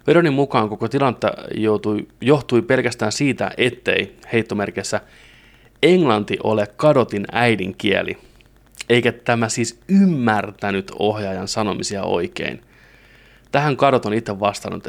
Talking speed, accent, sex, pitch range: 105 wpm, native, male, 105-135 Hz